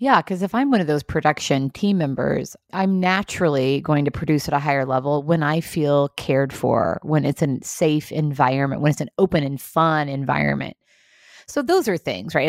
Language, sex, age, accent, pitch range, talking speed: English, female, 30-49, American, 140-185 Hz, 195 wpm